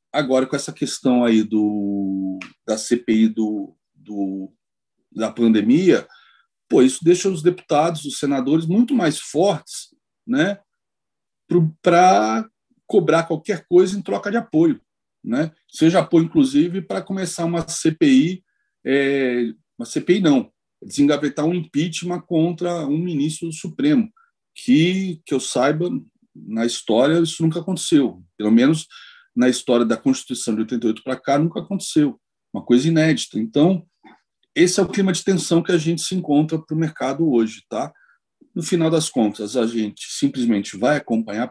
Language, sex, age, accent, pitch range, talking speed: Portuguese, male, 40-59, Brazilian, 125-190 Hz, 145 wpm